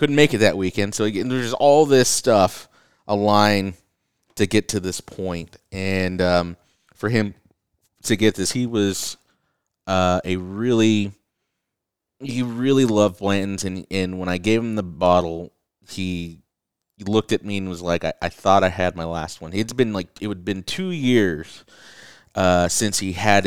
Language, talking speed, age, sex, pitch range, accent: English, 175 wpm, 30-49, male, 90-105 Hz, American